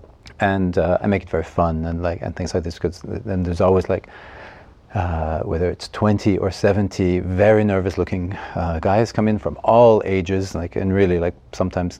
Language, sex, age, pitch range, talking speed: English, male, 40-59, 90-100 Hz, 190 wpm